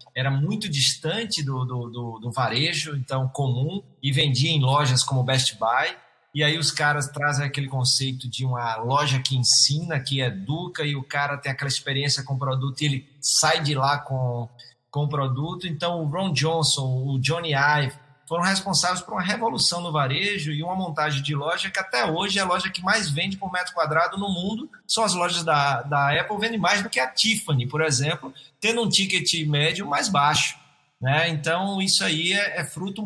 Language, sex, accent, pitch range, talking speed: Portuguese, male, Brazilian, 130-170 Hz, 195 wpm